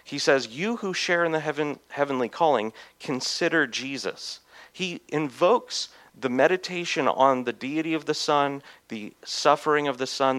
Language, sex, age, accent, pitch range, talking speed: English, male, 40-59, American, 125-155 Hz, 150 wpm